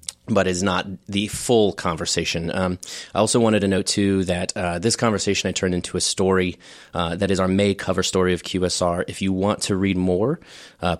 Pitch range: 85-95 Hz